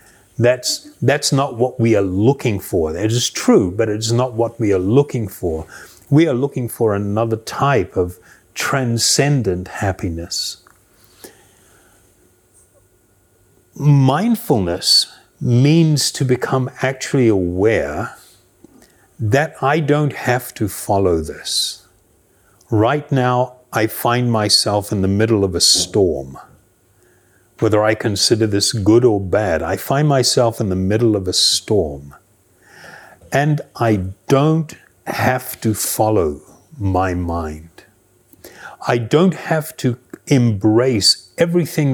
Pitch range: 95-135 Hz